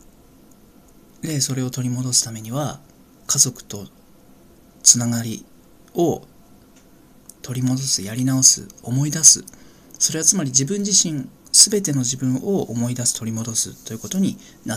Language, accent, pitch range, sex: Japanese, native, 105-145 Hz, male